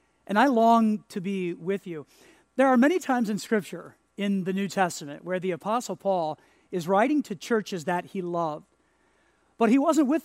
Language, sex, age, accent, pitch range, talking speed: English, male, 40-59, American, 180-230 Hz, 185 wpm